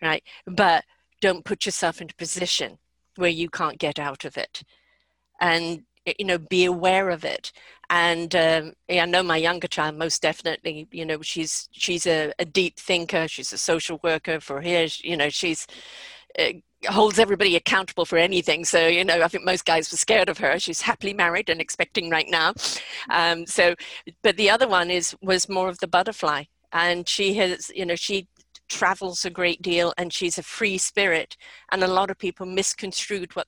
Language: English